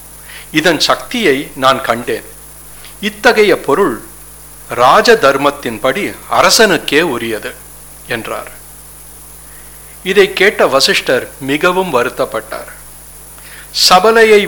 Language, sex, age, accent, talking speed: English, male, 60-79, Indian, 75 wpm